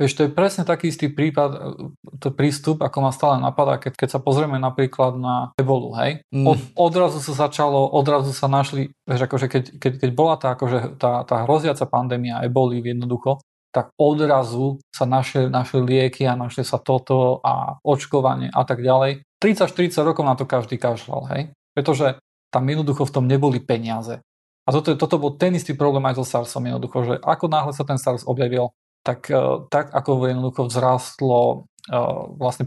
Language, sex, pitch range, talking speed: Slovak, male, 130-150 Hz, 175 wpm